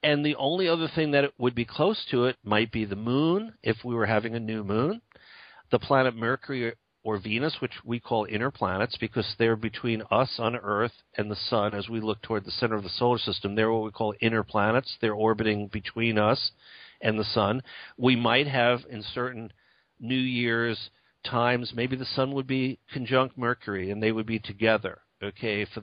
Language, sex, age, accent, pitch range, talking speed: English, male, 50-69, American, 105-125 Hz, 200 wpm